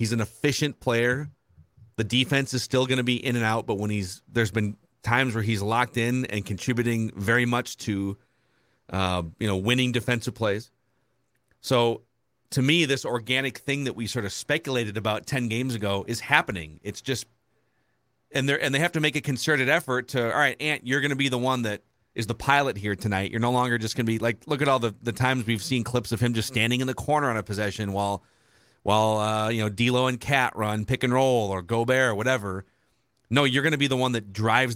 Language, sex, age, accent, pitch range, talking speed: English, male, 40-59, American, 110-140 Hz, 225 wpm